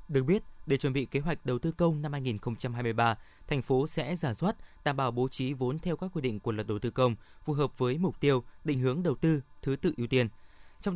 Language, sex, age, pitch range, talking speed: Vietnamese, male, 20-39, 120-160 Hz, 245 wpm